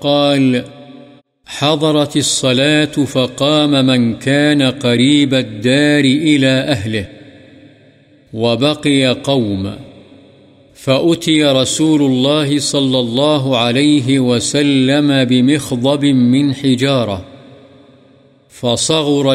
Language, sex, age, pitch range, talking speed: Urdu, male, 50-69, 125-145 Hz, 70 wpm